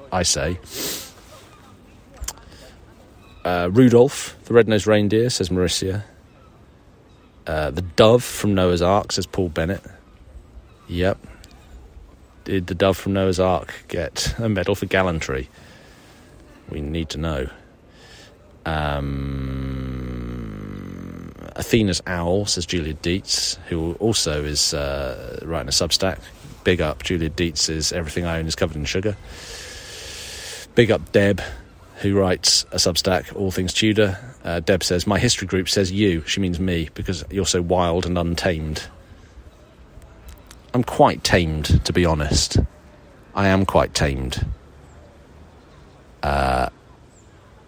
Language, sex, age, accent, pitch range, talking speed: English, male, 30-49, British, 75-95 Hz, 120 wpm